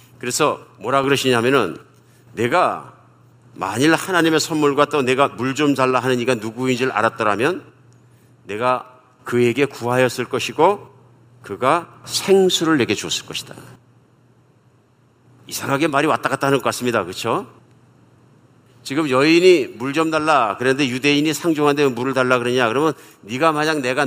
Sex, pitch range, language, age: male, 120-145 Hz, Korean, 50-69